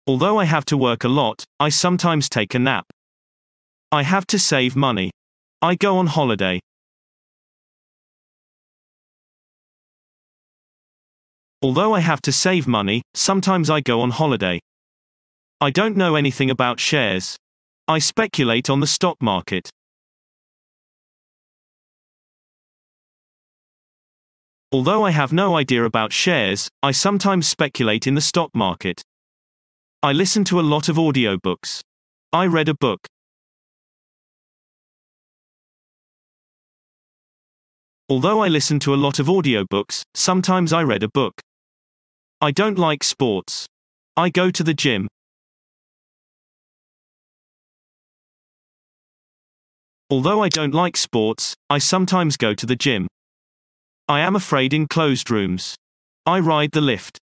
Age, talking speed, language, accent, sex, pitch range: 30-49, 115 wpm, English, British, male, 120-170 Hz